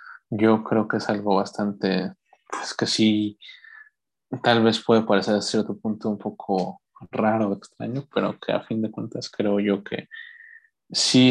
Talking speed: 160 wpm